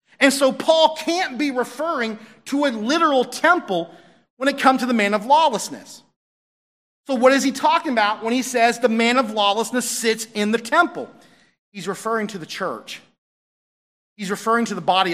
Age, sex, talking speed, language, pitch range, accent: 40-59, male, 180 wpm, English, 210-265 Hz, American